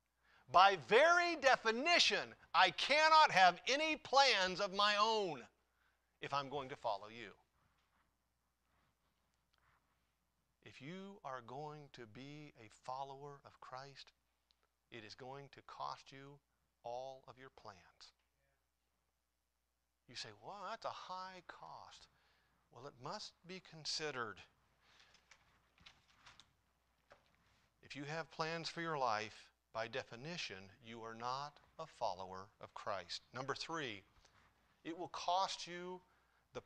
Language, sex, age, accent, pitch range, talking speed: English, male, 40-59, American, 120-190 Hz, 120 wpm